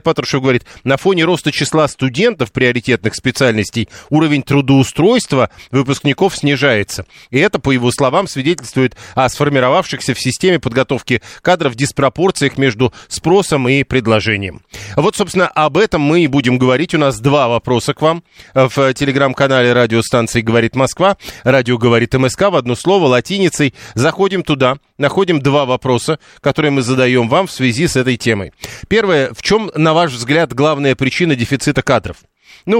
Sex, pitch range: male, 125-155 Hz